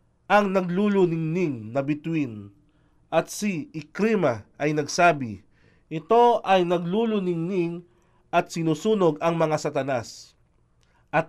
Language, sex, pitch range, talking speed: Filipino, male, 150-200 Hz, 95 wpm